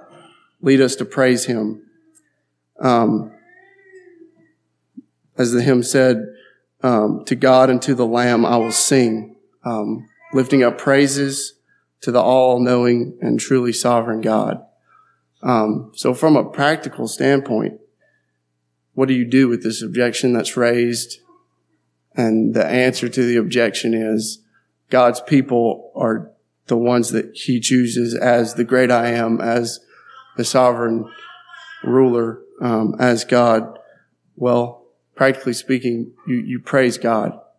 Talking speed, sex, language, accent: 130 wpm, male, English, American